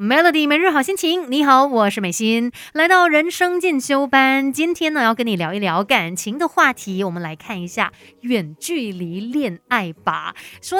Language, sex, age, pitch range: Chinese, female, 30-49, 185-255 Hz